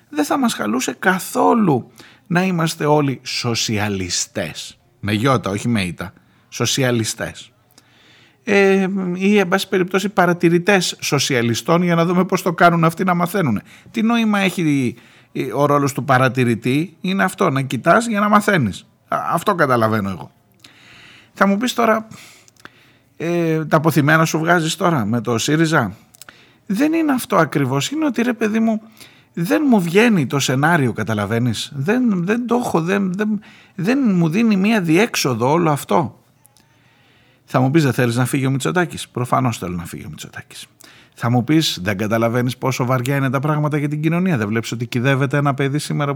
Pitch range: 120-185 Hz